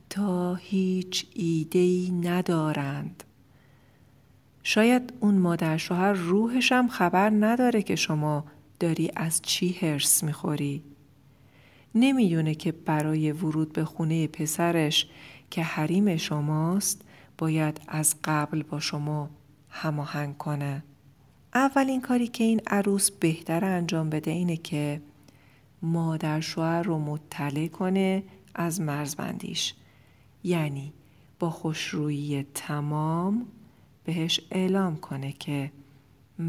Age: 40-59